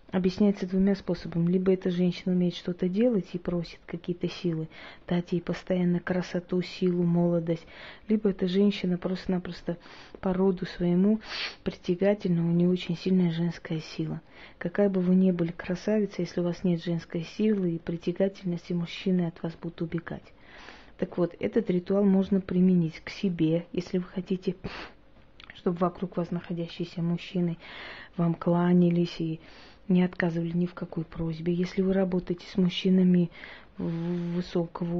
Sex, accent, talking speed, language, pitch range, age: female, native, 140 wpm, Russian, 170-185 Hz, 30-49